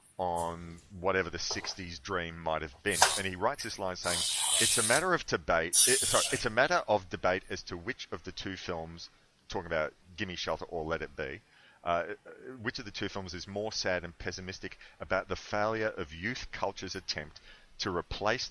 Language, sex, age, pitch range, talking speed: English, male, 30-49, 85-110 Hz, 200 wpm